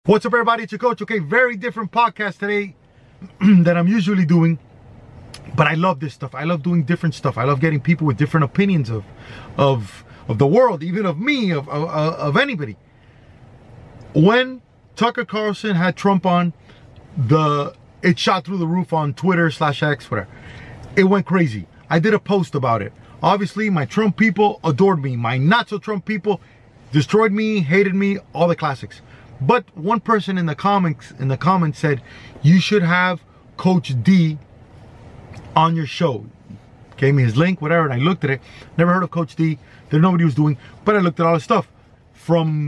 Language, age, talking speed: English, 30-49, 180 wpm